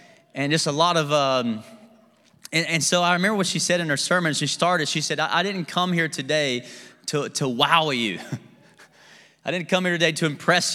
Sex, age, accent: male, 20-39, American